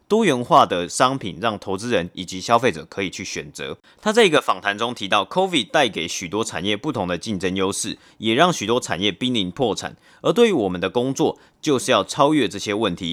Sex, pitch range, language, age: male, 95-125 Hz, Chinese, 30-49